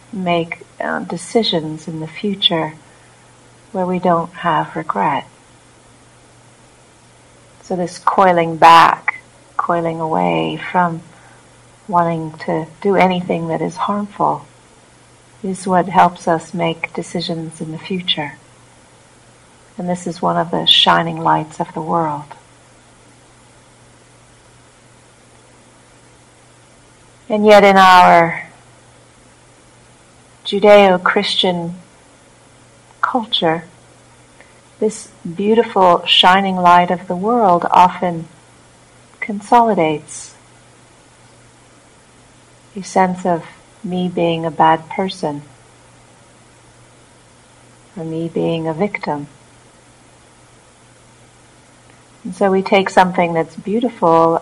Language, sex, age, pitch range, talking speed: English, female, 50-69, 160-190 Hz, 85 wpm